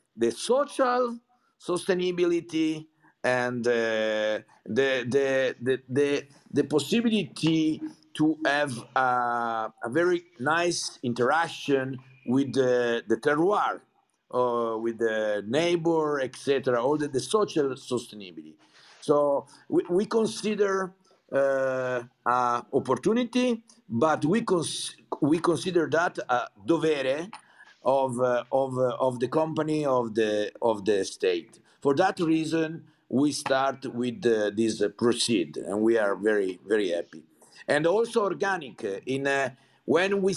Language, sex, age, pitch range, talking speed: English, male, 50-69, 125-175 Hz, 120 wpm